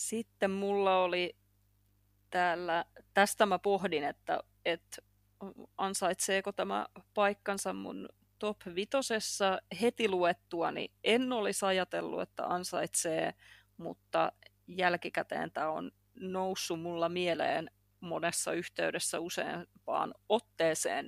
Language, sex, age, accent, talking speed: English, female, 30-49, Finnish, 95 wpm